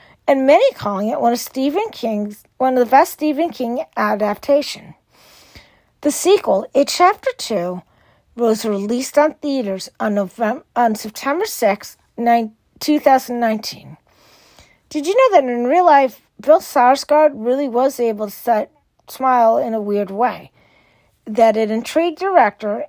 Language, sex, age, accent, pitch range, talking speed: English, female, 40-59, American, 220-295 Hz, 135 wpm